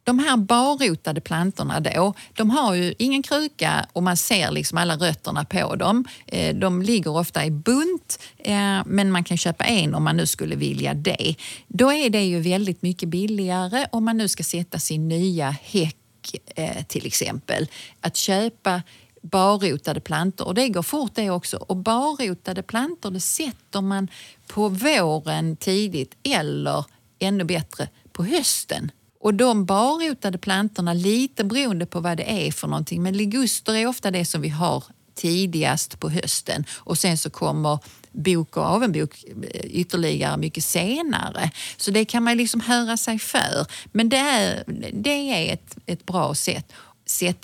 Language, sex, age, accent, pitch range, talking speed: Swedish, female, 30-49, native, 170-220 Hz, 160 wpm